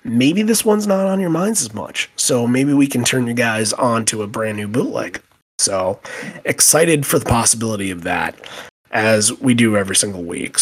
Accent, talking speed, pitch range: American, 200 wpm, 110-125 Hz